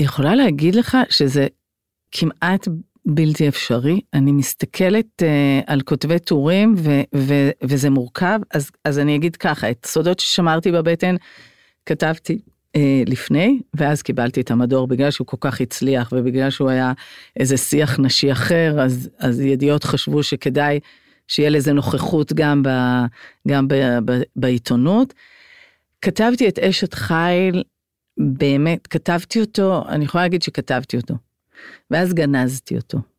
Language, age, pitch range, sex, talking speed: Hebrew, 50-69, 130-160 Hz, female, 135 wpm